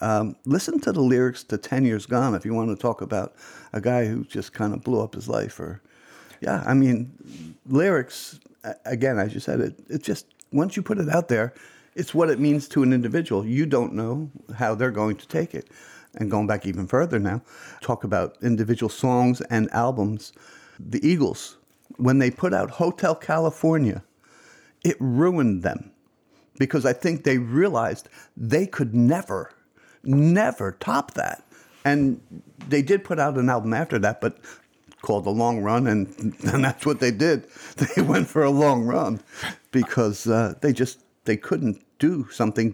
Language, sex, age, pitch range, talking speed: English, male, 50-69, 115-150 Hz, 180 wpm